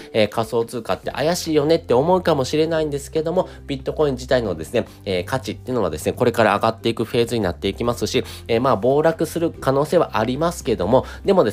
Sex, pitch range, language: male, 100-145 Hz, Japanese